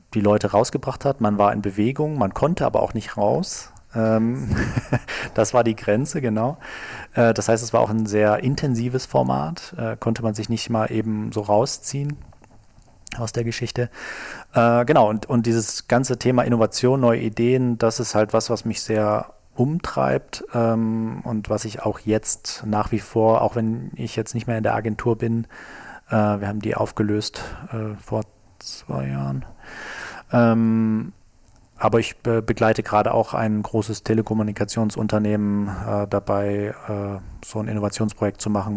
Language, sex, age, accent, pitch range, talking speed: German, male, 40-59, German, 105-115 Hz, 150 wpm